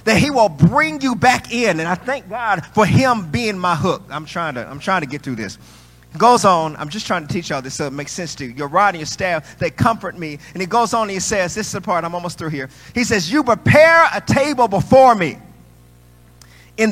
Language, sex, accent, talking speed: English, male, American, 260 wpm